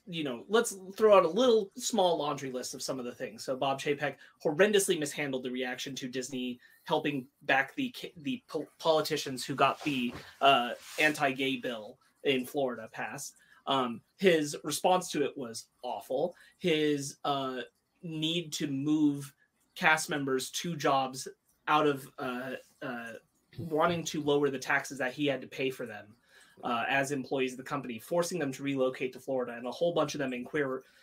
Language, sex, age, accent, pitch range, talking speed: English, male, 30-49, American, 130-155 Hz, 175 wpm